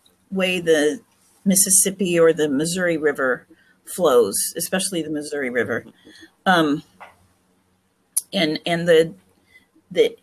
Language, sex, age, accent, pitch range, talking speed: English, female, 40-59, American, 165-220 Hz, 100 wpm